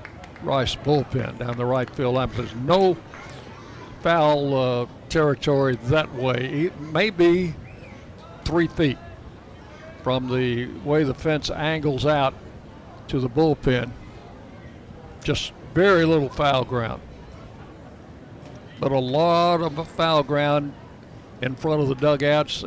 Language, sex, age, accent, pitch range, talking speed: English, male, 60-79, American, 125-155 Hz, 110 wpm